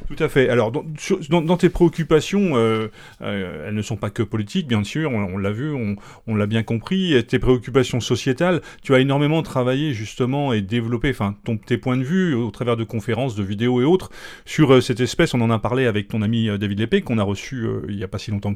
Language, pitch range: French, 115-150 Hz